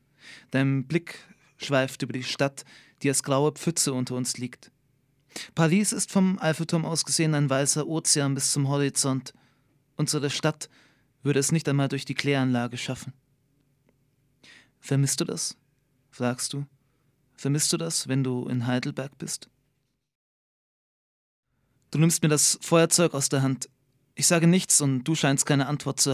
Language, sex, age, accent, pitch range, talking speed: German, male, 30-49, German, 130-155 Hz, 145 wpm